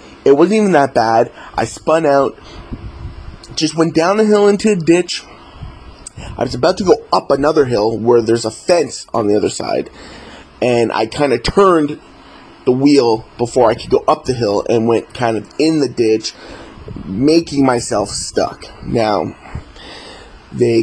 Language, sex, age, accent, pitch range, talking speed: English, male, 30-49, American, 115-150 Hz, 165 wpm